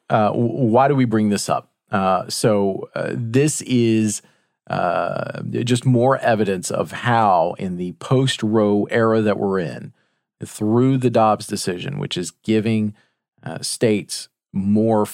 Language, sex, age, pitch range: English, male, 40-59, 105-125 Hz